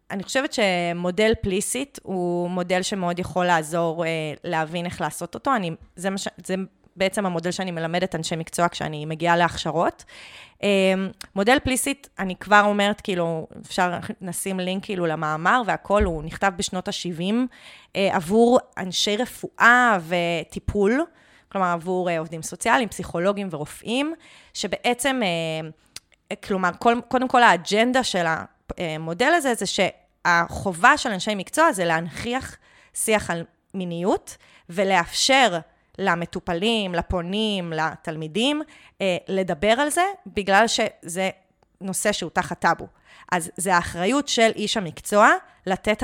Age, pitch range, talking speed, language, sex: 20-39, 175-220 Hz, 115 wpm, Hebrew, female